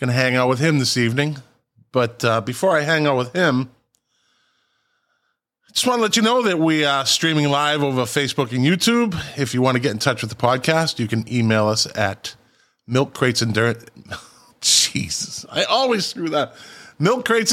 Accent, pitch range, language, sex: American, 120-155 Hz, English, male